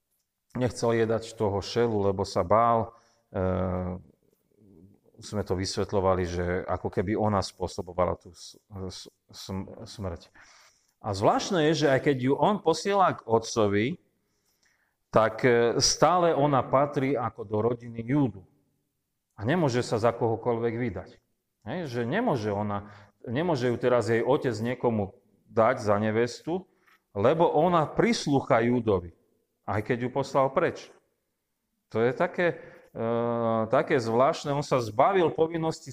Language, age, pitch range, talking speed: Slovak, 40-59, 105-130 Hz, 125 wpm